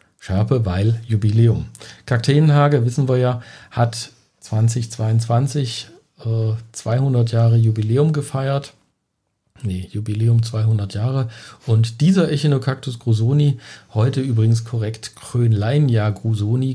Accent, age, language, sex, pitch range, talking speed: German, 50-69, German, male, 110-130 Hz, 95 wpm